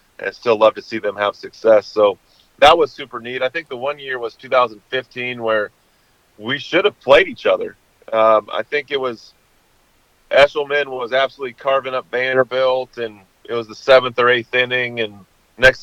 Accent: American